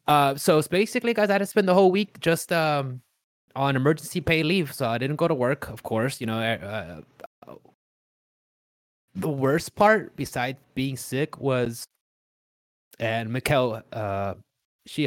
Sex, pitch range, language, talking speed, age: male, 115-150 Hz, English, 160 wpm, 20-39